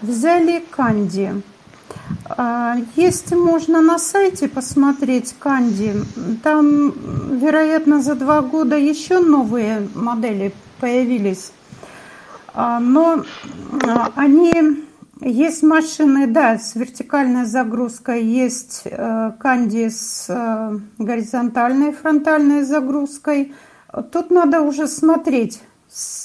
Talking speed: 80 wpm